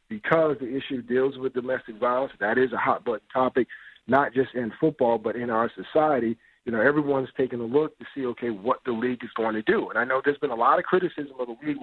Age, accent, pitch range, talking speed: 40-59, American, 125-150 Hz, 250 wpm